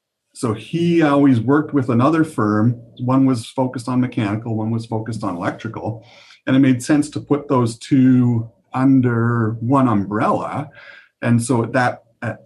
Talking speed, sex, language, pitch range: 155 wpm, male, English, 100-125 Hz